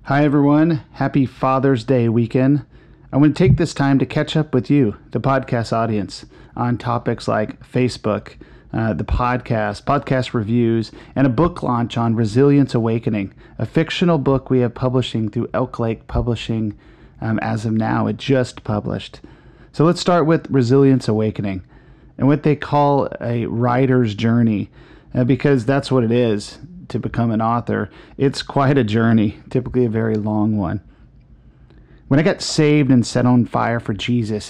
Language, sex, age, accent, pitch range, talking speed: English, male, 40-59, American, 110-135 Hz, 165 wpm